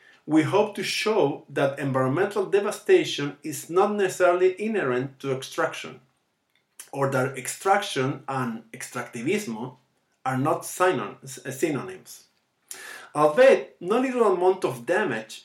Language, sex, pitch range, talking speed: English, male, 135-190 Hz, 105 wpm